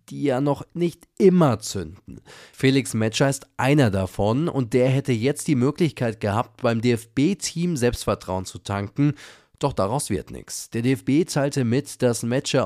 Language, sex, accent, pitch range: German, male, German, 110-140 Hz